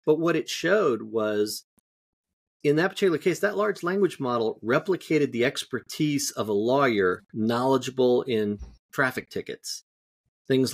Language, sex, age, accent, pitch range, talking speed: English, male, 40-59, American, 110-135 Hz, 135 wpm